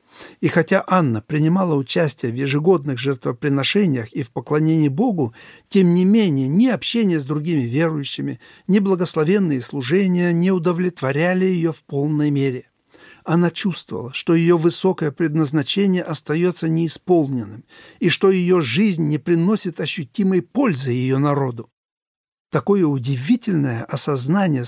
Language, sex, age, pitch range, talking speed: Russian, male, 60-79, 135-180 Hz, 120 wpm